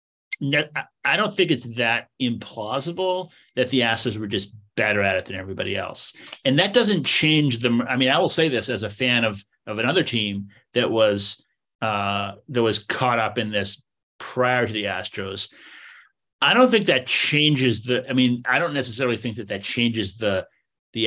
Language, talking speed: English, 185 wpm